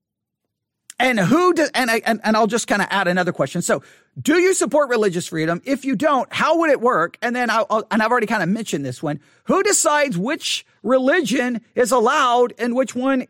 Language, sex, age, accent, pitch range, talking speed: English, male, 40-59, American, 200-280 Hz, 215 wpm